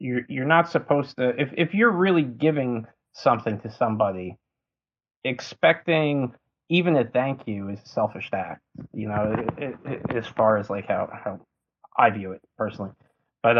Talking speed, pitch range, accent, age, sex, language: 155 wpm, 105-120 Hz, American, 30-49, male, English